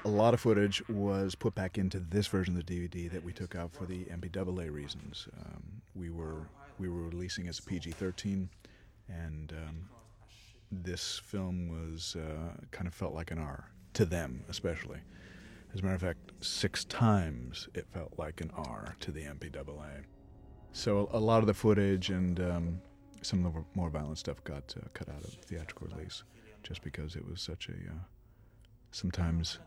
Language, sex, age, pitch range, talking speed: English, male, 40-59, 85-100 Hz, 185 wpm